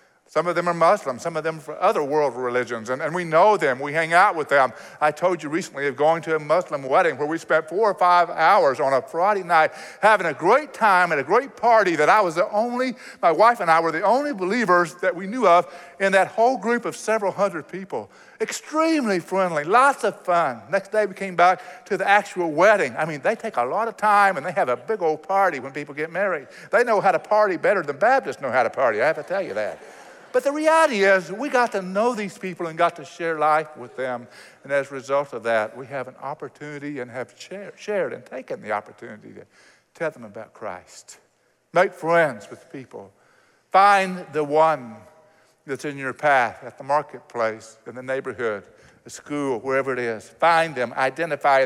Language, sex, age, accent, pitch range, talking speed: English, male, 50-69, American, 135-195 Hz, 220 wpm